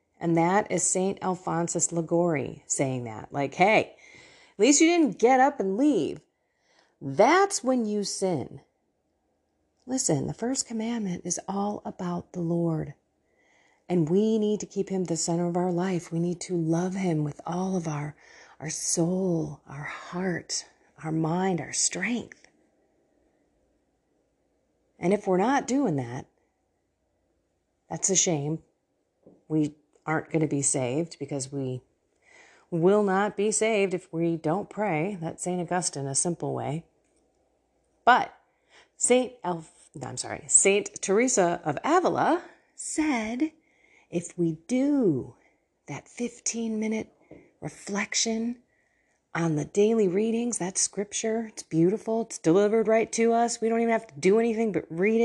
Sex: female